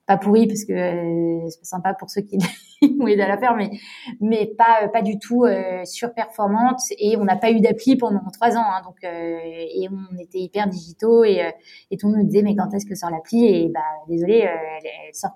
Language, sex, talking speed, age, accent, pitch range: French, female, 240 wpm, 20-39, French, 190-235 Hz